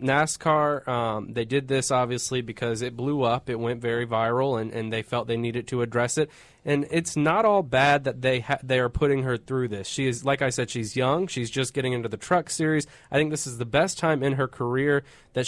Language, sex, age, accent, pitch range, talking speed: English, male, 20-39, American, 115-135 Hz, 240 wpm